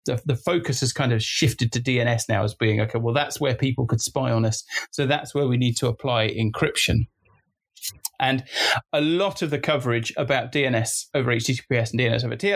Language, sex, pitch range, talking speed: English, male, 115-140 Hz, 200 wpm